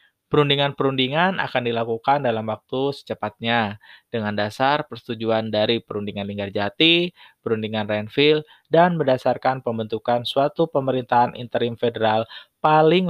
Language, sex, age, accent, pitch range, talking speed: Indonesian, male, 20-39, native, 110-140 Hz, 105 wpm